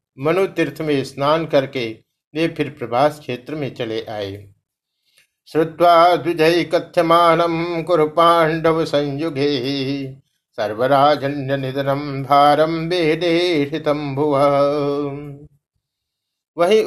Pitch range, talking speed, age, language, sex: 140-170 Hz, 65 wpm, 50-69, Hindi, male